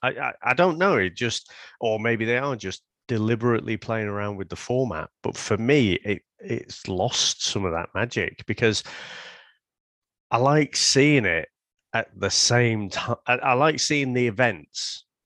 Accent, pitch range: British, 90-120 Hz